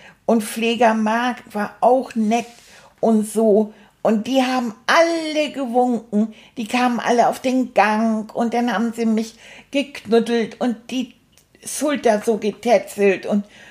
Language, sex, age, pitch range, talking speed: German, female, 60-79, 220-265 Hz, 135 wpm